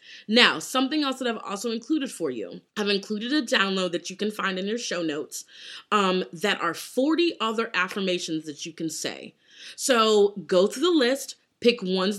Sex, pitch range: female, 180-245 Hz